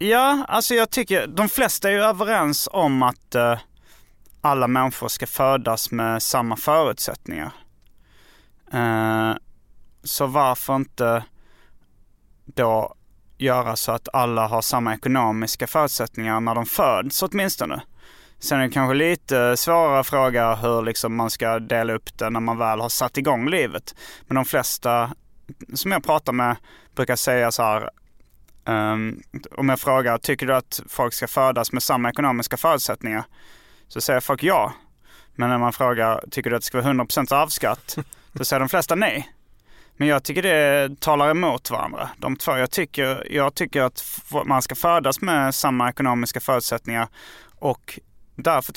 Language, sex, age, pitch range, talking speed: English, male, 30-49, 115-145 Hz, 150 wpm